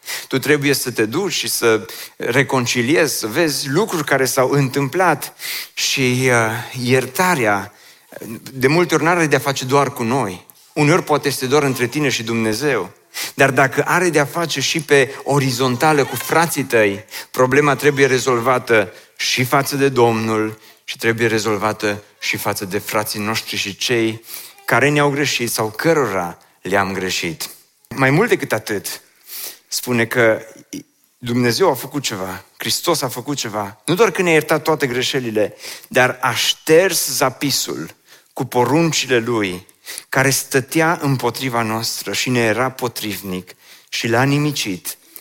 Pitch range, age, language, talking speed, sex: 110-145 Hz, 30-49, Romanian, 145 wpm, male